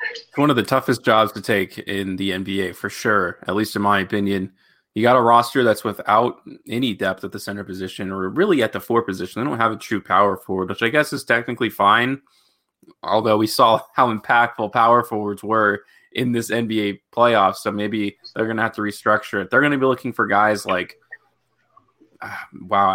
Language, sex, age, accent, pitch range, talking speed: English, male, 20-39, American, 105-130 Hz, 205 wpm